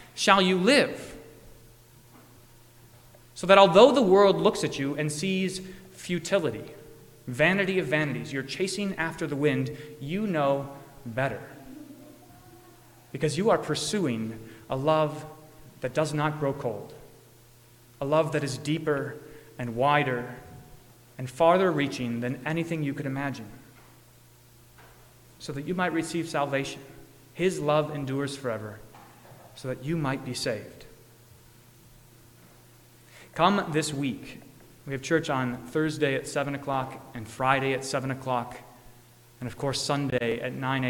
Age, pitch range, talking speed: 30-49, 120-155 Hz, 130 wpm